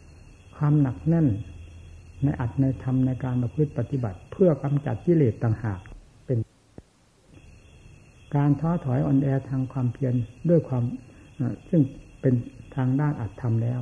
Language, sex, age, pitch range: Thai, male, 60-79, 100-140 Hz